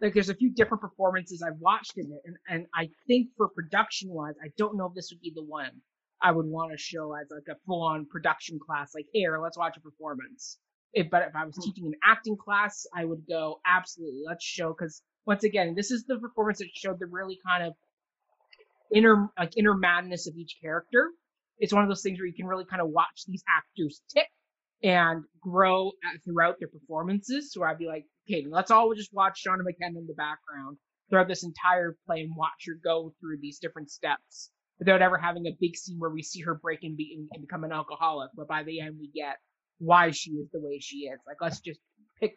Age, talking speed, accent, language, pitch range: 30-49, 225 wpm, American, English, 160-195 Hz